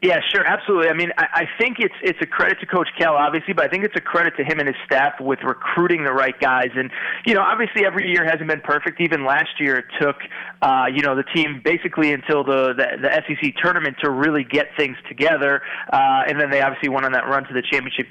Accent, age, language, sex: American, 20-39, English, male